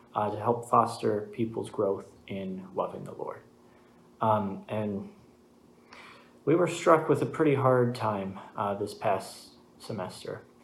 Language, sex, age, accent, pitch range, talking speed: English, male, 30-49, American, 100-125 Hz, 135 wpm